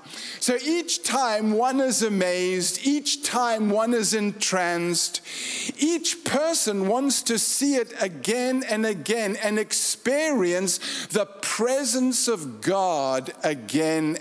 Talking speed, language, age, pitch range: 115 wpm, English, 50-69, 175-250 Hz